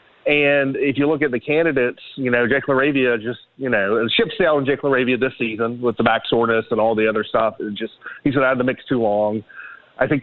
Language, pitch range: English, 115-140 Hz